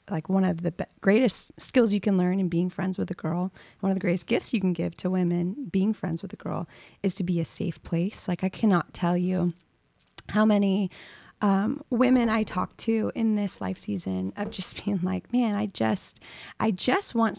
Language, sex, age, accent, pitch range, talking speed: English, female, 20-39, American, 185-230 Hz, 215 wpm